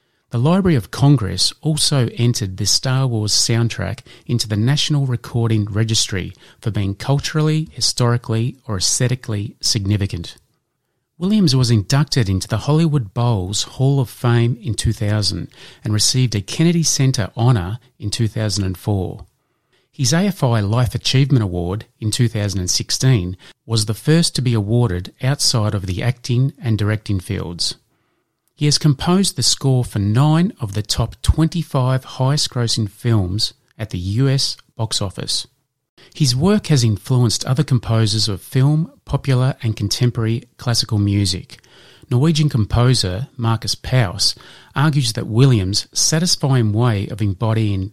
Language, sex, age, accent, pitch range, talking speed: English, male, 30-49, Australian, 105-135 Hz, 130 wpm